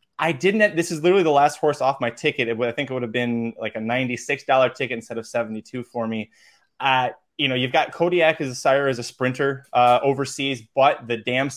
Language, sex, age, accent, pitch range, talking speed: English, male, 20-39, American, 120-140 Hz, 225 wpm